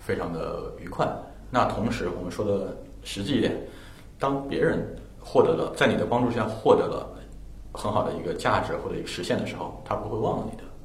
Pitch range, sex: 90-110 Hz, male